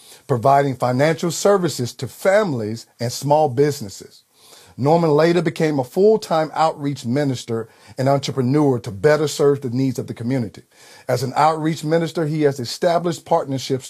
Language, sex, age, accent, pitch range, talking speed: English, male, 50-69, American, 130-165 Hz, 140 wpm